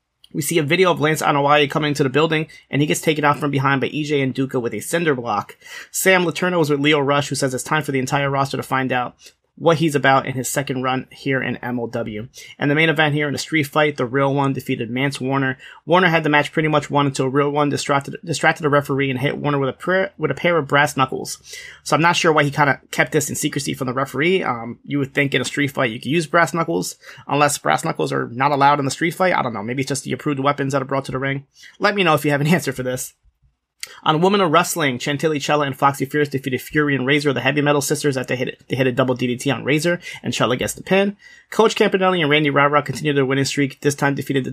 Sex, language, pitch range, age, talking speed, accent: male, English, 135-155 Hz, 30-49, 275 wpm, American